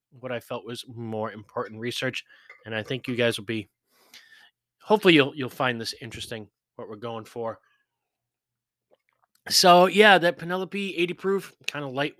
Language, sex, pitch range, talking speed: English, male, 120-170 Hz, 160 wpm